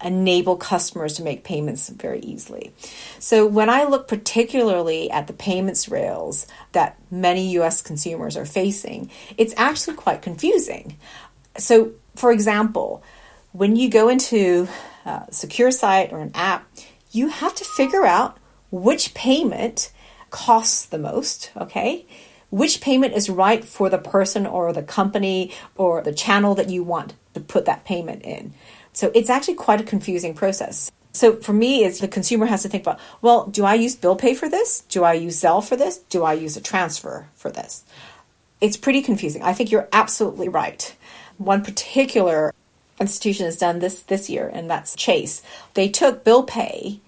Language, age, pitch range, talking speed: English, 40-59, 180-235 Hz, 170 wpm